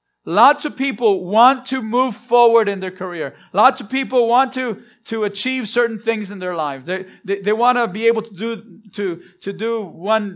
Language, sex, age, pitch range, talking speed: English, male, 40-59, 175-230 Hz, 205 wpm